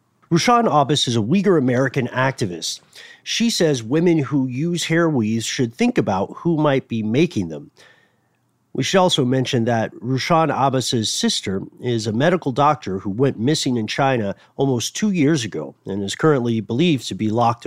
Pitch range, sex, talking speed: 115-155 Hz, male, 165 wpm